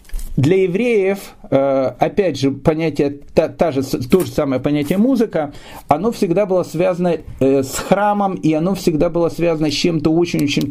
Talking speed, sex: 135 wpm, male